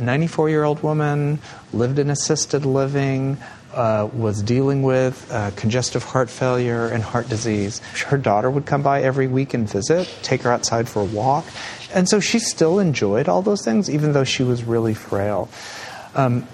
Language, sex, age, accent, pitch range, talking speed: English, male, 40-59, American, 115-150 Hz, 170 wpm